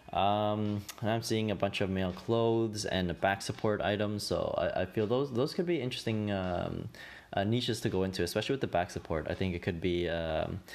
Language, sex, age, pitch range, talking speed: English, male, 20-39, 90-115 Hz, 225 wpm